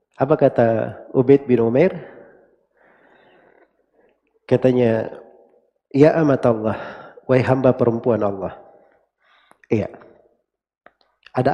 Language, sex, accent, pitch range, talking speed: Indonesian, male, native, 115-160 Hz, 75 wpm